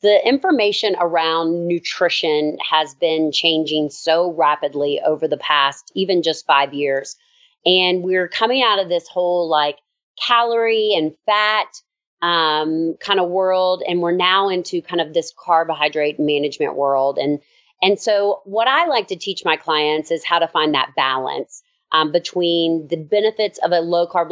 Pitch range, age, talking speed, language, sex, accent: 160-210 Hz, 30-49, 160 wpm, English, female, American